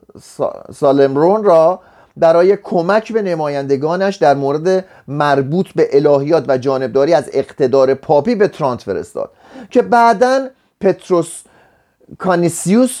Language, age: Persian, 30-49